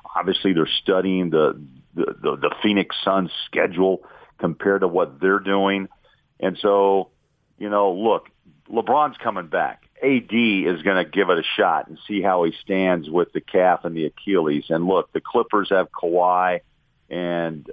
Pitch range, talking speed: 90-105 Hz, 165 wpm